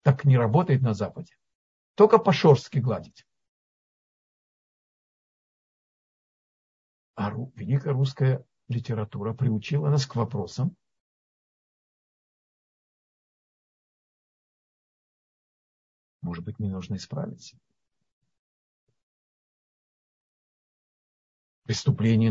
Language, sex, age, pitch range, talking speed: Russian, male, 50-69, 110-145 Hz, 60 wpm